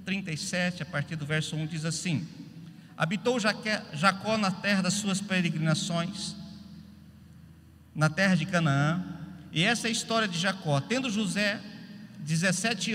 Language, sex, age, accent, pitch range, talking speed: Portuguese, male, 50-69, Brazilian, 170-210 Hz, 135 wpm